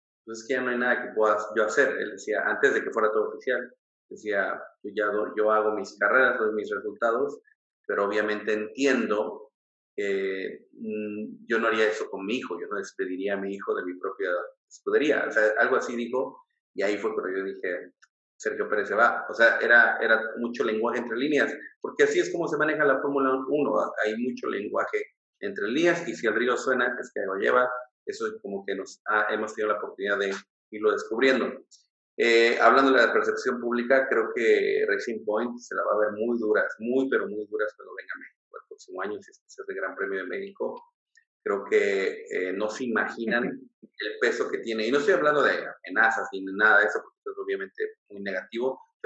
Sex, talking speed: male, 200 wpm